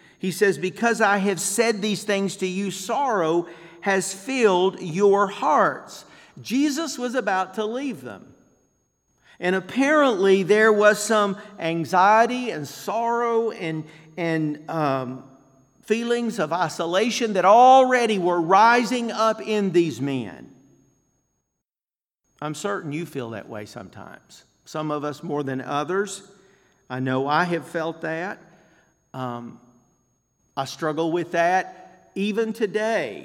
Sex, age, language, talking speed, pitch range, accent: male, 50-69, English, 125 wpm, 160-215 Hz, American